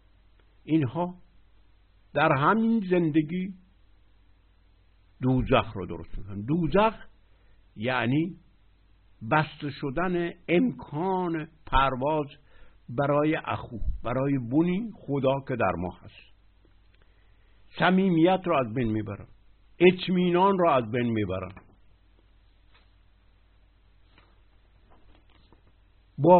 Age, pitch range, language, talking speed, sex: 60-79, 95-155 Hz, Persian, 75 wpm, male